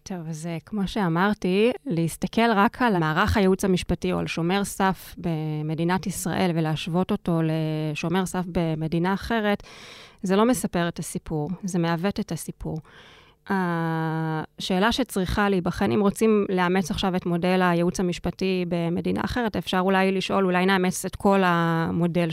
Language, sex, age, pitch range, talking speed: Hebrew, female, 20-39, 170-195 Hz, 140 wpm